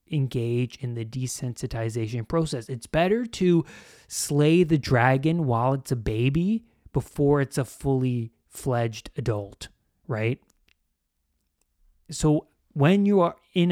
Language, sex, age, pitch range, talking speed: English, male, 20-39, 110-145 Hz, 120 wpm